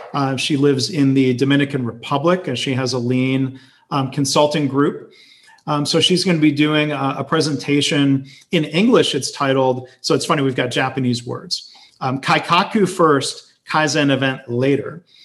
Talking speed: 165 wpm